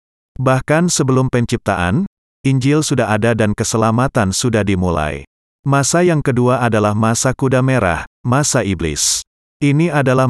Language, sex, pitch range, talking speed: Indonesian, male, 100-125 Hz, 120 wpm